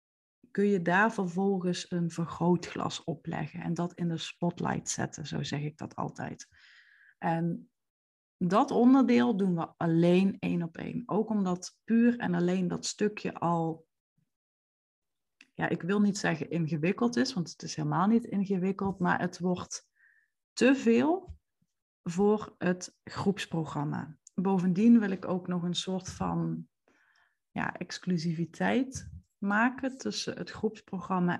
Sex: female